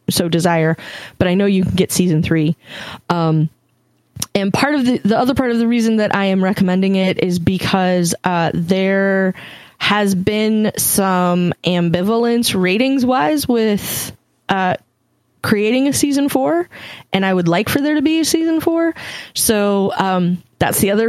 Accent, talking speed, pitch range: American, 165 wpm, 175-215 Hz